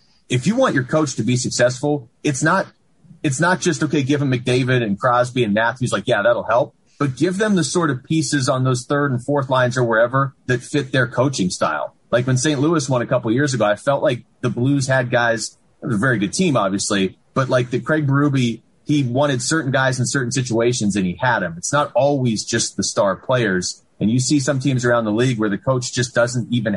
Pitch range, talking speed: 110-140 Hz, 235 wpm